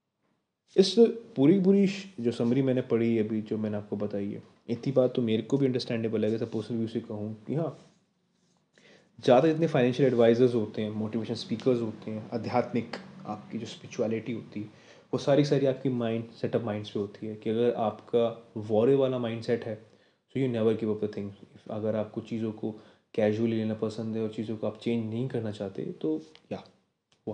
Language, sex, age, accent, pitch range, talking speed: Hindi, male, 20-39, native, 110-130 Hz, 195 wpm